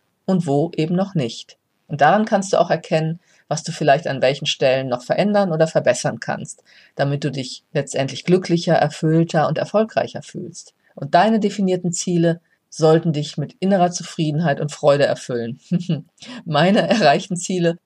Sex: female